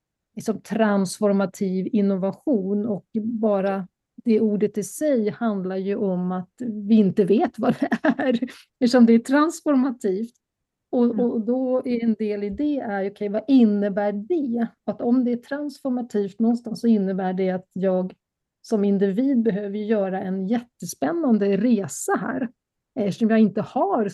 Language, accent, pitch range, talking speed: Swedish, native, 195-240 Hz, 145 wpm